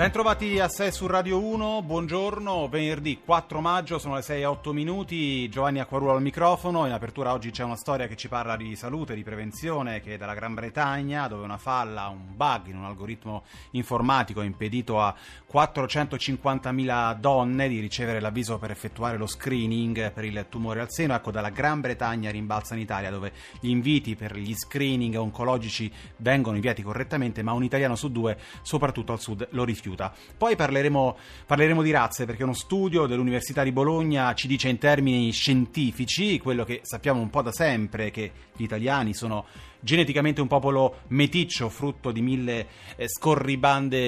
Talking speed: 170 wpm